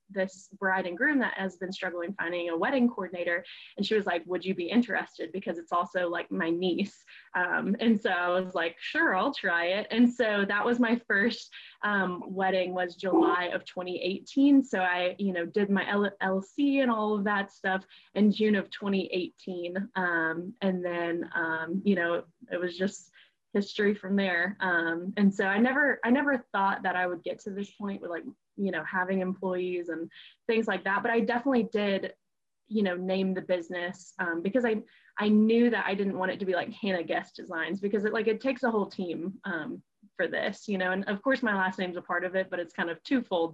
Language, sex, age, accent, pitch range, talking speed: English, female, 10-29, American, 180-215 Hz, 210 wpm